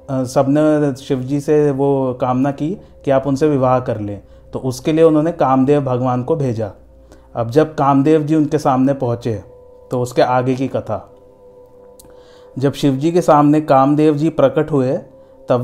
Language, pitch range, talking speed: Hindi, 130-150 Hz, 155 wpm